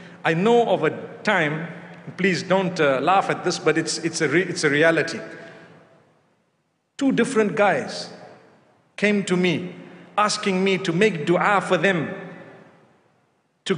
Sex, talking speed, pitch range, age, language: male, 145 wpm, 185-250 Hz, 50-69, English